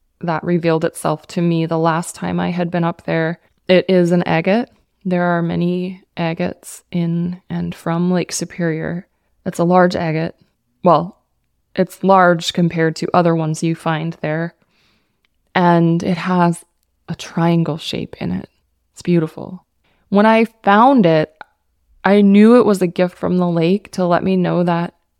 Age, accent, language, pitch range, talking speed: 20-39, American, English, 165-190 Hz, 160 wpm